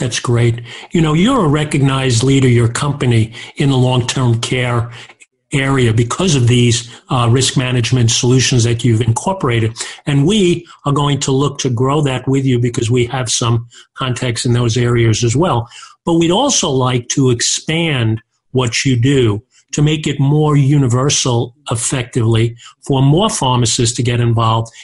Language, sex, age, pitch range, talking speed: English, male, 40-59, 120-145 Hz, 160 wpm